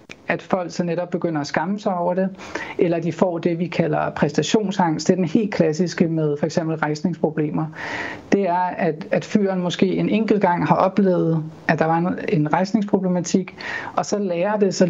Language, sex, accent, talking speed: Danish, male, native, 180 wpm